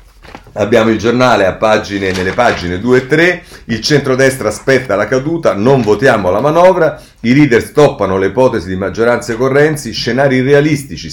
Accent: native